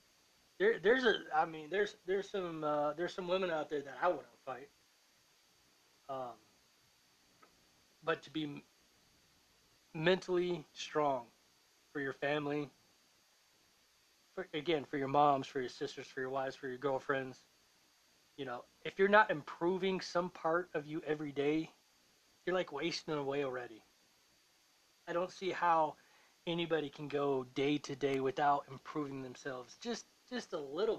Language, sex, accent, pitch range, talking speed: English, male, American, 140-180 Hz, 140 wpm